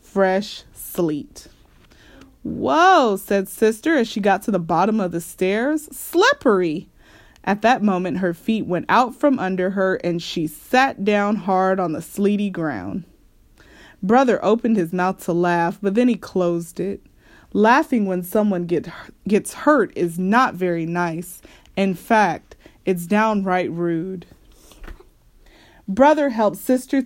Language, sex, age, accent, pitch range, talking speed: English, female, 20-39, American, 185-235 Hz, 140 wpm